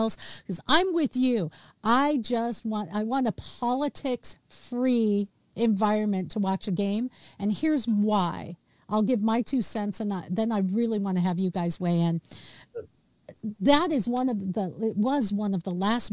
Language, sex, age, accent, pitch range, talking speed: English, female, 50-69, American, 200-255 Hz, 180 wpm